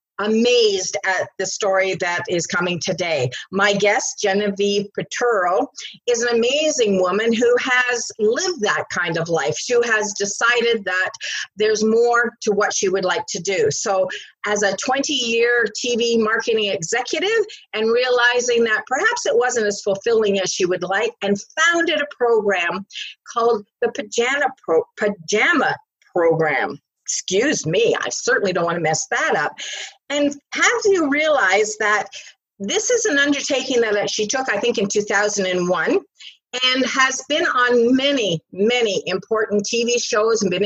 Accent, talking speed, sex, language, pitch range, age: American, 150 wpm, female, English, 195-245 Hz, 50-69